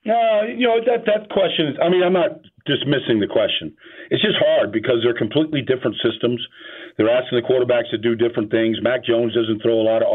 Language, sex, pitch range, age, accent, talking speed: English, male, 125-170 Hz, 50-69, American, 225 wpm